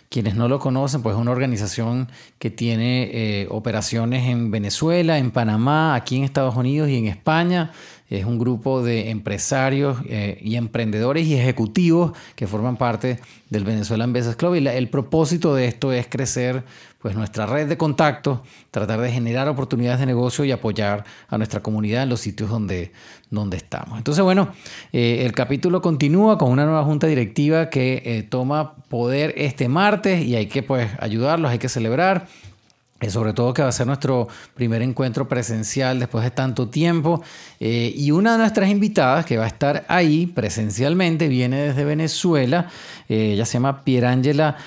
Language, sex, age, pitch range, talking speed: English, male, 30-49, 115-150 Hz, 170 wpm